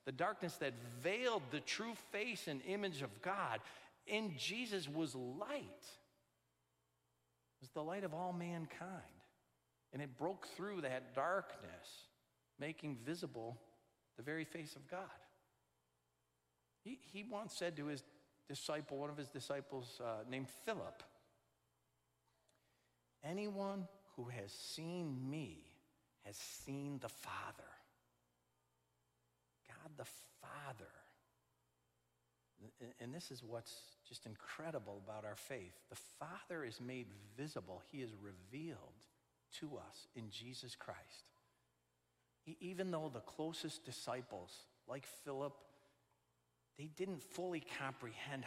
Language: English